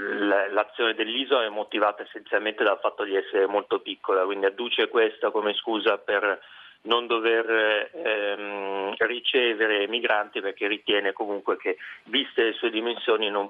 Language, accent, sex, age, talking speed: Italian, native, male, 30-49, 140 wpm